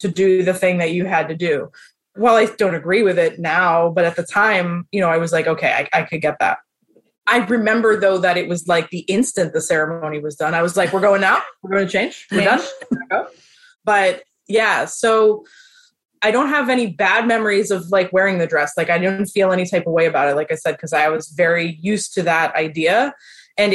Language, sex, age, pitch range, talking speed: English, female, 20-39, 175-220 Hz, 235 wpm